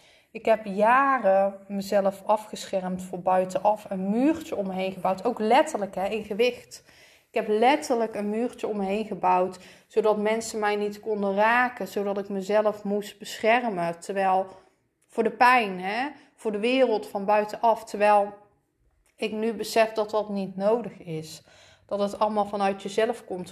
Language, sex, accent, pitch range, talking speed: Dutch, female, Dutch, 195-225 Hz, 150 wpm